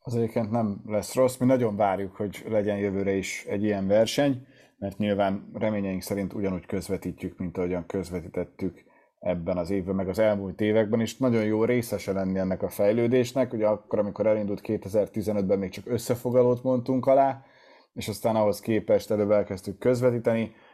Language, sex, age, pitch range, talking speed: Hungarian, male, 30-49, 100-115 Hz, 160 wpm